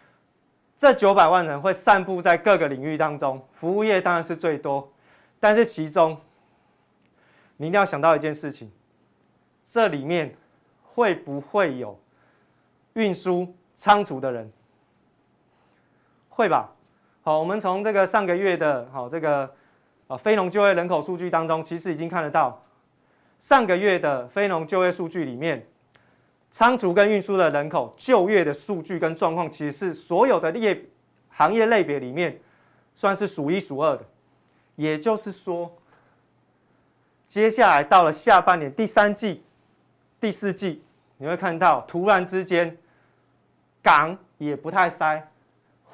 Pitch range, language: 150-195 Hz, Chinese